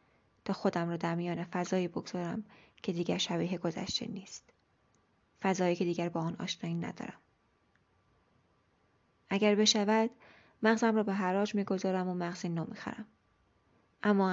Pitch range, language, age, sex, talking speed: 170-210 Hz, Persian, 20-39, female, 125 wpm